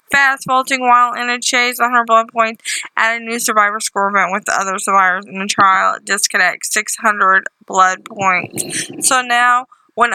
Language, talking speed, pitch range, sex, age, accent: English, 170 wpm, 200-245 Hz, female, 20-39, American